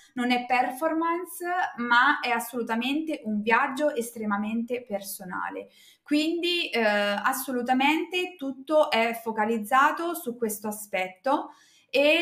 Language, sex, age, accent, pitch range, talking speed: Italian, female, 20-39, native, 220-290 Hz, 100 wpm